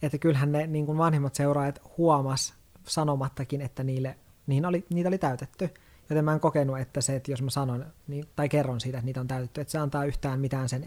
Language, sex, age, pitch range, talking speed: Finnish, male, 20-39, 135-150 Hz, 220 wpm